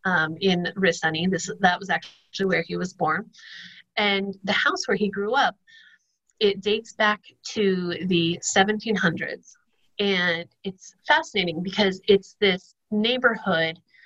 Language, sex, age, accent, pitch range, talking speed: English, female, 30-49, American, 175-210 Hz, 130 wpm